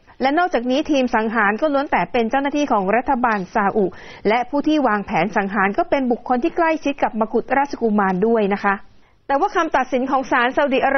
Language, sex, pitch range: Thai, female, 215-280 Hz